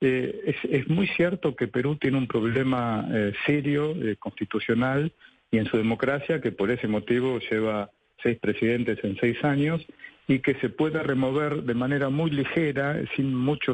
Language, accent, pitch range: Spanish, Argentinian, 115-150 Hz